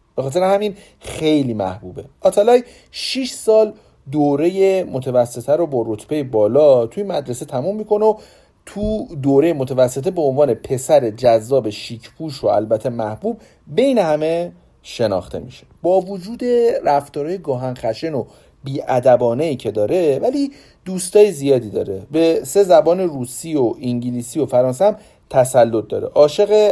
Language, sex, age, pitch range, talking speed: Persian, male, 40-59, 115-180 Hz, 135 wpm